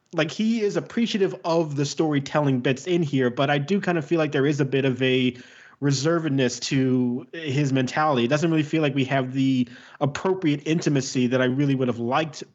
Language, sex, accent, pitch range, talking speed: English, male, American, 130-160 Hz, 205 wpm